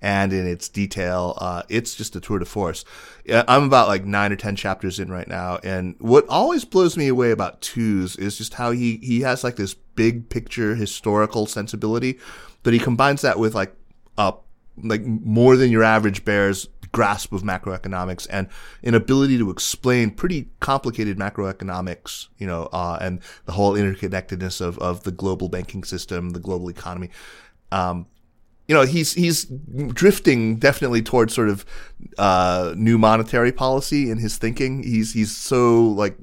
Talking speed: 170 wpm